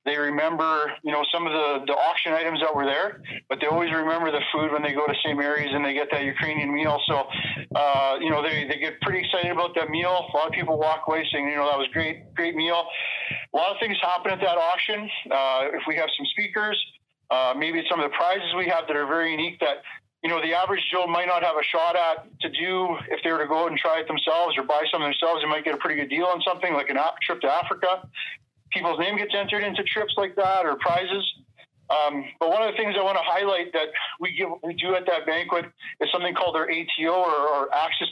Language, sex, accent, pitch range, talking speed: English, male, American, 150-175 Hz, 255 wpm